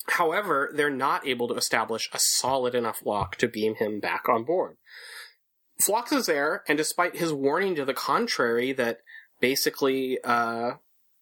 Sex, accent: male, American